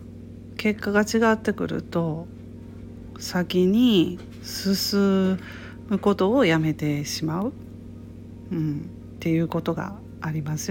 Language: Japanese